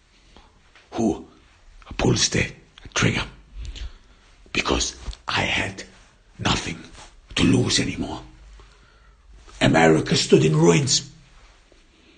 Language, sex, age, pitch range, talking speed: English, male, 60-79, 65-85 Hz, 75 wpm